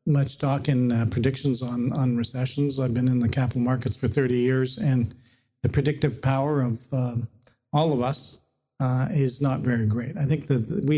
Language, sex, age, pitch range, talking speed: English, male, 50-69, 125-145 Hz, 190 wpm